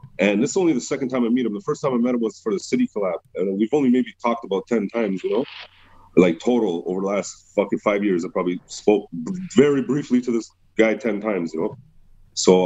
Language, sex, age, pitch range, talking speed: English, male, 30-49, 105-125 Hz, 250 wpm